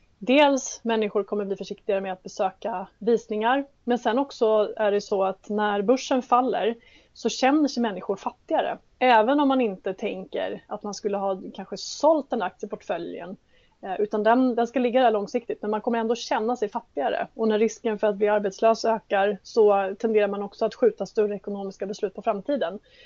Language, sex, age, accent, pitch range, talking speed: Swedish, female, 20-39, native, 205-240 Hz, 180 wpm